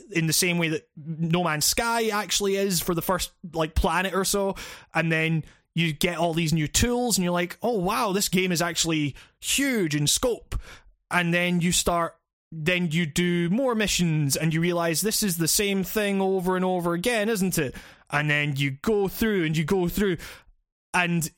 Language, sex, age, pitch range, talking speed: English, male, 20-39, 155-185 Hz, 195 wpm